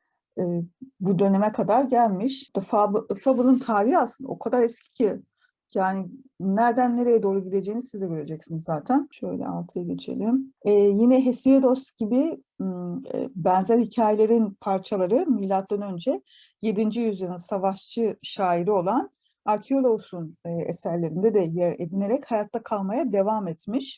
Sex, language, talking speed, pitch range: female, Turkish, 125 wpm, 190-250 Hz